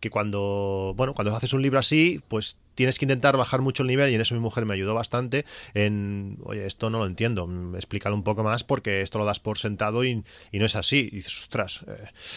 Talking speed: 235 wpm